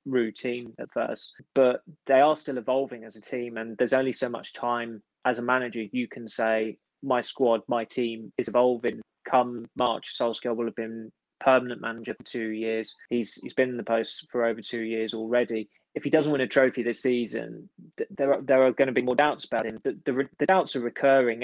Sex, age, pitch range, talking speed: male, 20-39, 115-130 Hz, 210 wpm